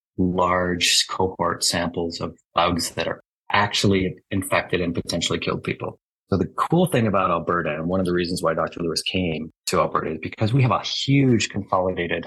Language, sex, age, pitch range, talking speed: English, male, 30-49, 90-105 Hz, 180 wpm